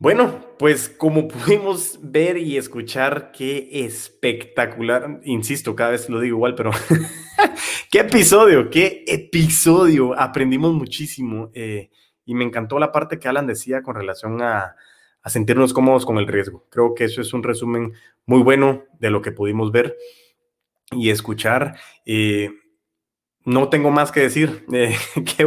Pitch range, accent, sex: 115-145 Hz, Mexican, male